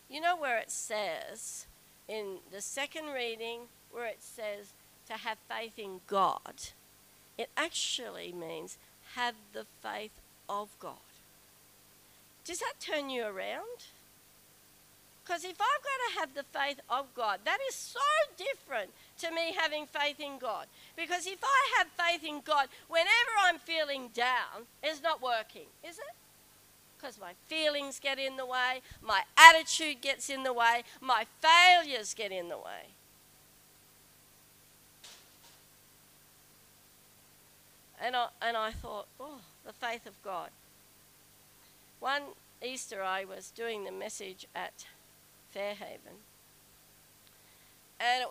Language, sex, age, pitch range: English, female, 50-69, 220-315 Hz